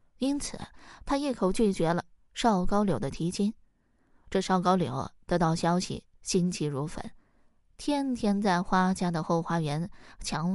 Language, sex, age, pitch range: Chinese, female, 20-39, 165-225 Hz